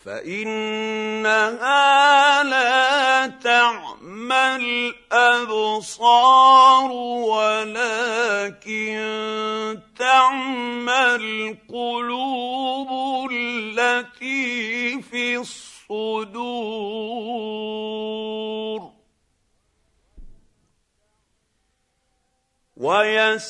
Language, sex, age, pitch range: Arabic, male, 50-69, 215-255 Hz